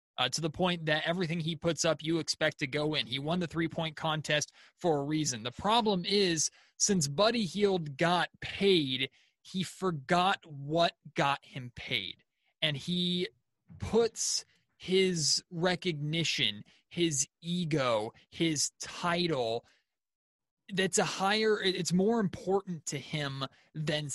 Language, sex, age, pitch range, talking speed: English, male, 20-39, 150-185 Hz, 135 wpm